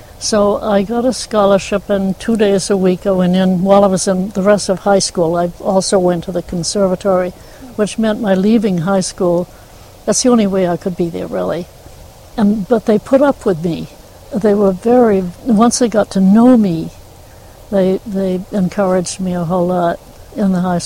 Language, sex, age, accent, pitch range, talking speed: English, female, 60-79, American, 185-205 Hz, 200 wpm